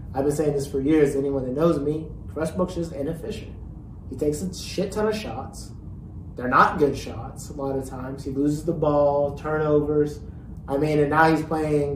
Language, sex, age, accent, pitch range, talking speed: English, male, 30-49, American, 120-150 Hz, 195 wpm